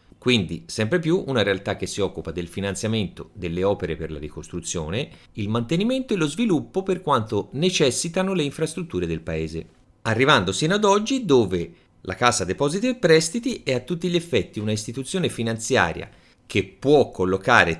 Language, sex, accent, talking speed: Italian, male, native, 160 wpm